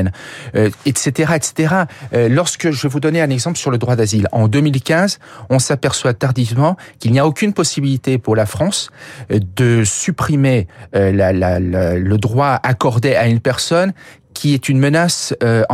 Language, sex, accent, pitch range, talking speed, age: French, male, French, 120-160 Hz, 170 wpm, 40-59